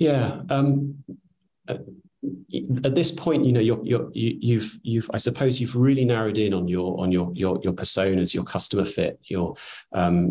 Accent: British